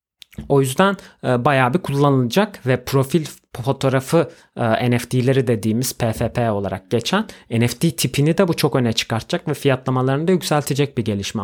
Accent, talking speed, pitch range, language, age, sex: native, 135 wpm, 115-155 Hz, Turkish, 30-49, male